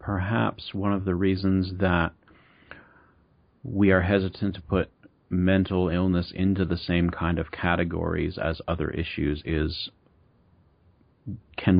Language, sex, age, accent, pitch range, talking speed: English, male, 40-59, American, 80-100 Hz, 120 wpm